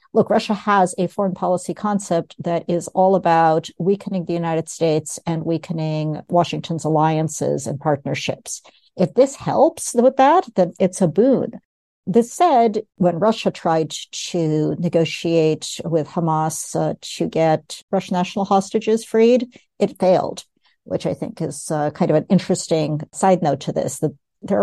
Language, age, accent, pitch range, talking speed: English, 60-79, American, 165-225 Hz, 155 wpm